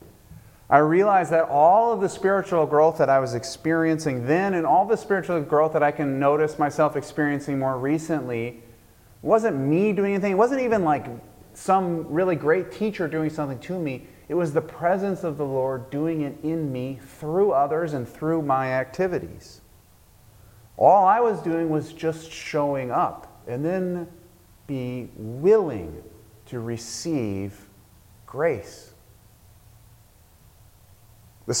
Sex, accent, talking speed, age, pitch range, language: male, American, 140 wpm, 30-49, 110-165 Hz, English